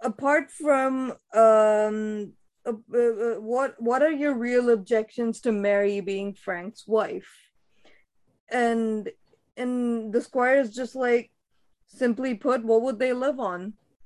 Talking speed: 130 wpm